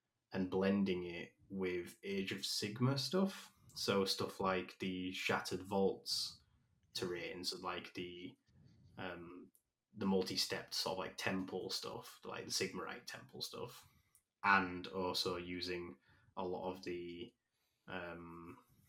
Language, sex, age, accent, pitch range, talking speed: English, male, 20-39, British, 90-100 Hz, 125 wpm